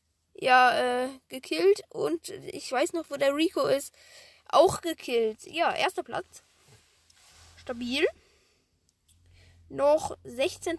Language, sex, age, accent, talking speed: German, female, 10-29, German, 105 wpm